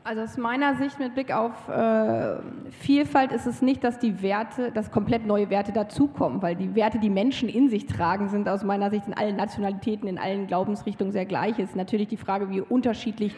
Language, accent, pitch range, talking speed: German, German, 210-250 Hz, 210 wpm